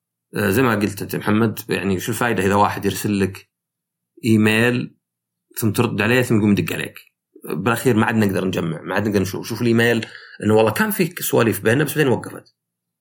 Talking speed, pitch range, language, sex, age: 190 wpm, 95-125 Hz, Arabic, male, 30-49